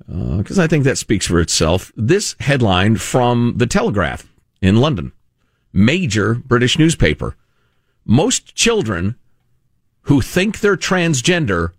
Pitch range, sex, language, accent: 120-175 Hz, male, English, American